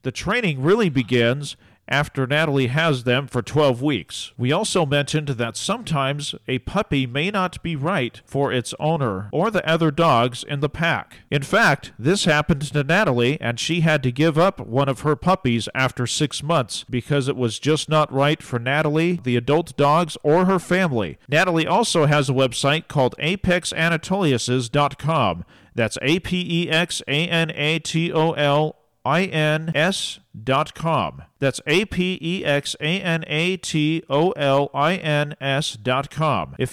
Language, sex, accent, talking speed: English, male, American, 195 wpm